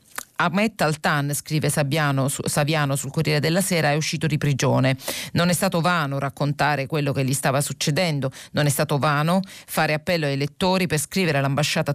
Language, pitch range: Italian, 140-160 Hz